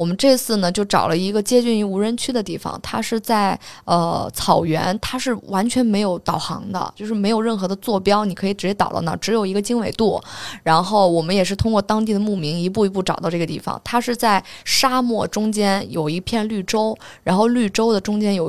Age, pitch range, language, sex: 20-39, 175-215 Hz, Chinese, female